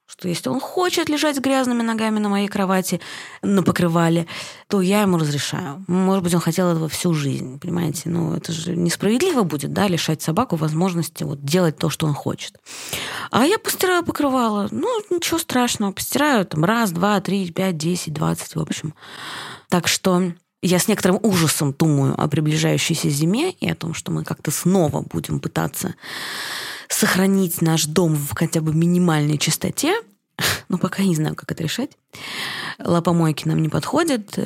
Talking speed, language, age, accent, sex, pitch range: 165 wpm, Russian, 20-39, native, female, 160-210 Hz